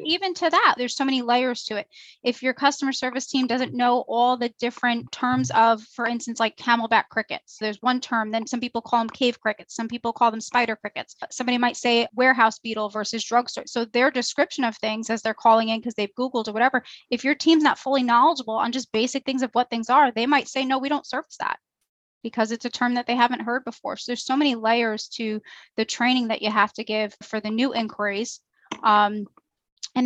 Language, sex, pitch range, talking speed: English, female, 220-245 Hz, 225 wpm